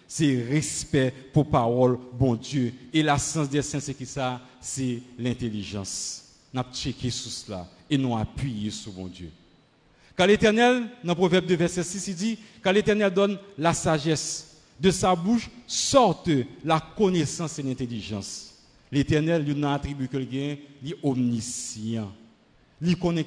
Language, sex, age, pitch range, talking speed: French, male, 50-69, 120-170 Hz, 160 wpm